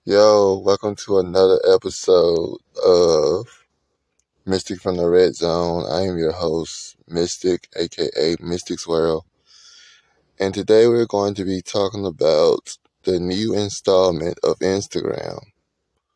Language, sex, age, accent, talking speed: English, male, 20-39, American, 120 wpm